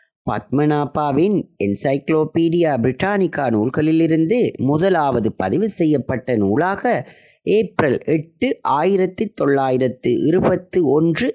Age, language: 30-49, Tamil